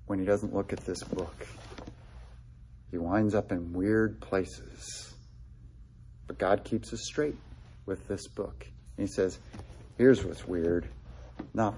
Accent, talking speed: American, 140 wpm